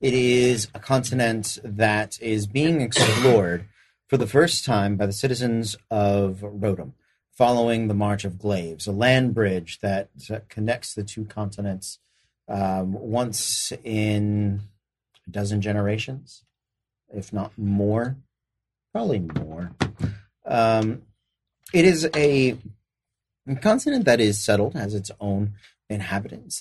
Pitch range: 100-115 Hz